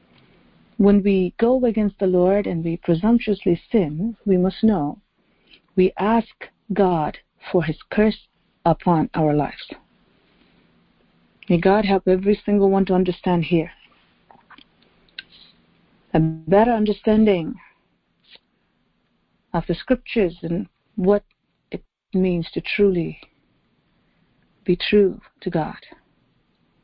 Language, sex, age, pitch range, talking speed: English, female, 50-69, 165-210 Hz, 105 wpm